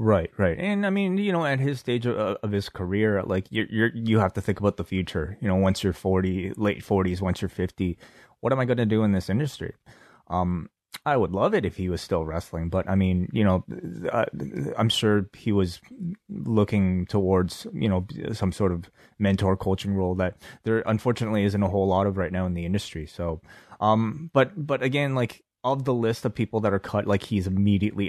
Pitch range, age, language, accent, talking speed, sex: 95-110 Hz, 20-39, English, American, 220 wpm, male